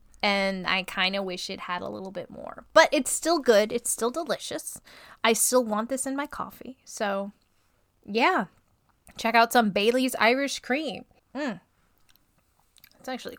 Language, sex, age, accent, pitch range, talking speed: English, female, 20-39, American, 200-265 Hz, 160 wpm